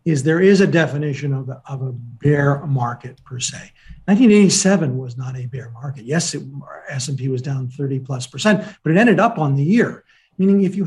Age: 50-69